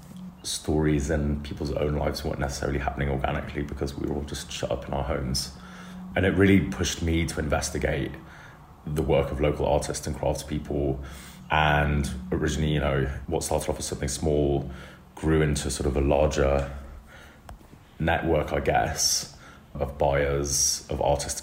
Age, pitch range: 30-49, 70-75 Hz